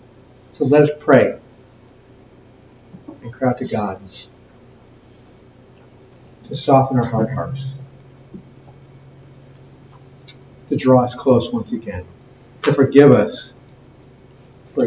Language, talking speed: English, 95 wpm